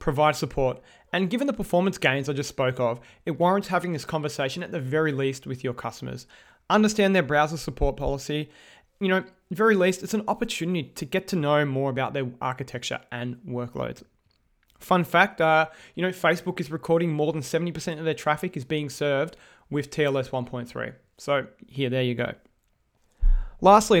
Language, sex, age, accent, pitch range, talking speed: English, male, 20-39, Australian, 135-175 Hz, 175 wpm